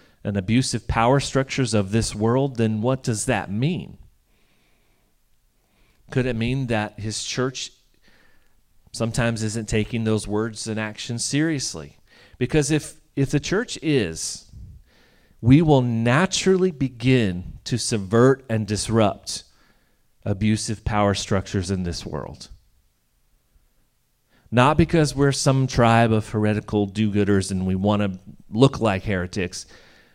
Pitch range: 105-135 Hz